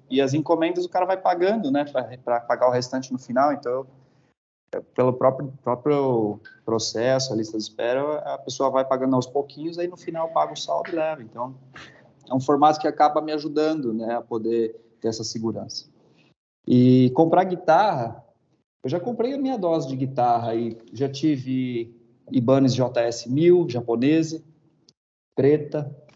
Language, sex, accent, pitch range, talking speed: Portuguese, male, Brazilian, 120-155 Hz, 160 wpm